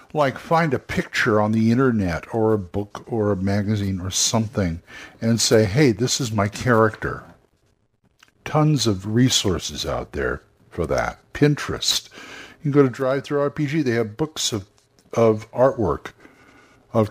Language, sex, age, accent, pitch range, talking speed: English, male, 60-79, American, 110-145 Hz, 155 wpm